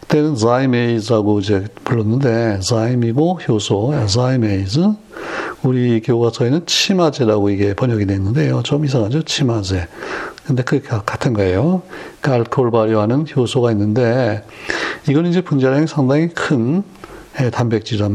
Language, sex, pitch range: Korean, male, 110-145 Hz